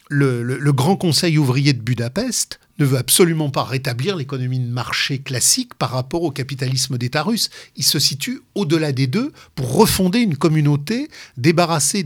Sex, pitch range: male, 135-180 Hz